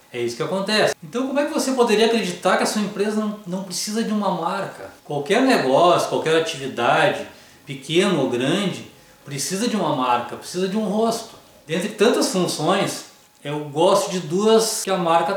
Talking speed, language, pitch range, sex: 175 wpm, Portuguese, 165-210 Hz, male